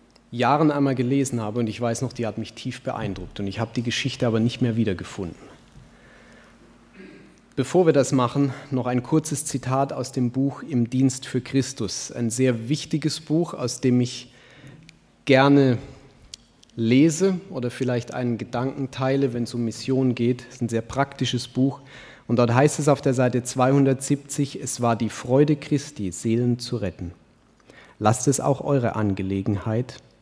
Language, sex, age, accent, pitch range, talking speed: German, male, 30-49, German, 115-140 Hz, 165 wpm